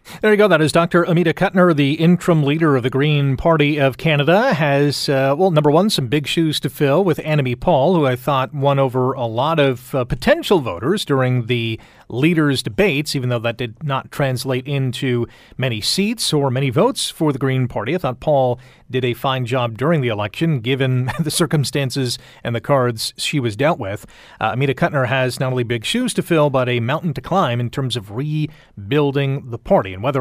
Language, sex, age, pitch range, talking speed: English, male, 40-59, 125-165 Hz, 205 wpm